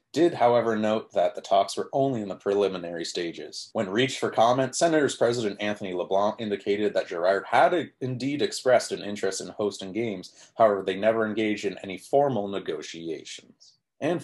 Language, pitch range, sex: English, 100-140 Hz, male